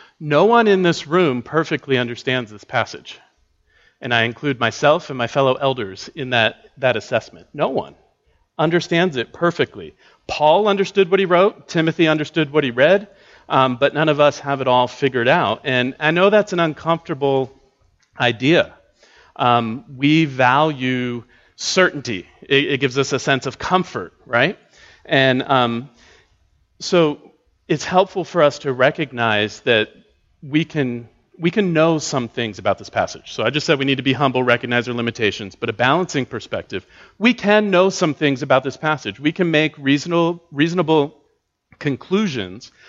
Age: 40-59